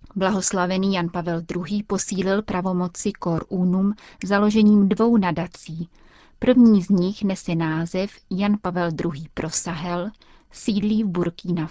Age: 30-49